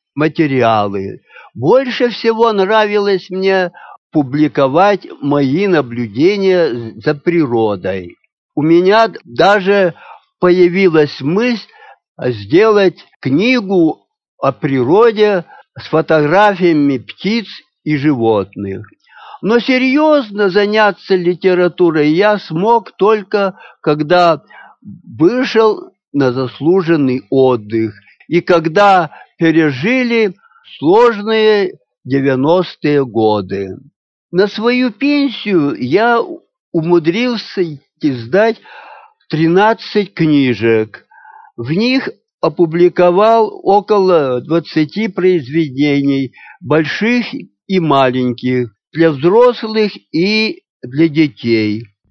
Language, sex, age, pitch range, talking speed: Russian, male, 60-79, 140-215 Hz, 75 wpm